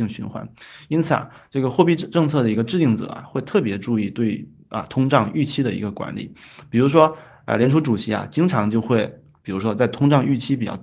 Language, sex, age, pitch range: Chinese, male, 20-39, 110-135 Hz